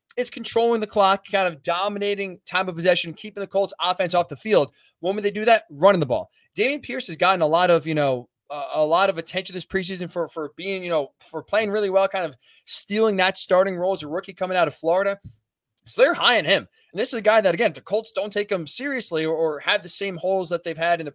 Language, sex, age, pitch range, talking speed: English, male, 20-39, 175-215 Hz, 265 wpm